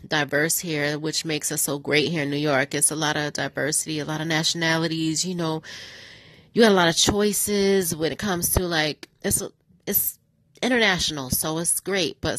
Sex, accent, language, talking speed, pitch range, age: female, American, English, 200 wpm, 155-200 Hz, 30-49